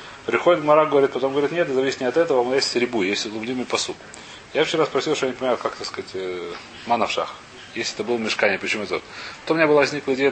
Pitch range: 110-145 Hz